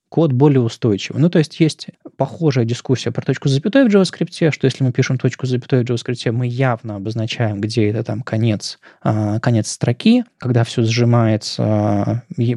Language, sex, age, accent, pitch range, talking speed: Russian, male, 20-39, native, 115-145 Hz, 170 wpm